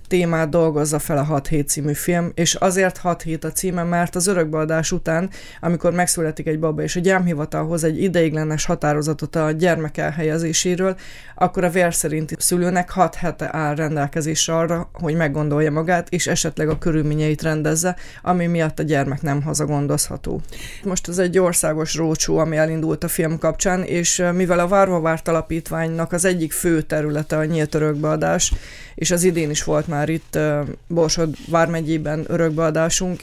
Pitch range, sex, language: 155-175 Hz, female, Hungarian